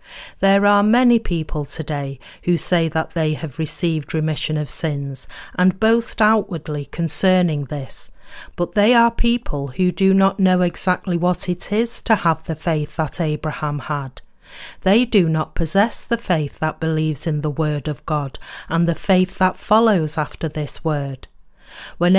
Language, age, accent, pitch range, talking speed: English, 40-59, British, 155-195 Hz, 160 wpm